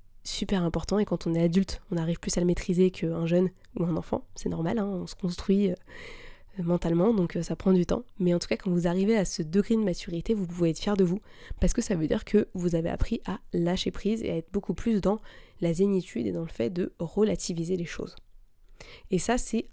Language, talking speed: French, 240 wpm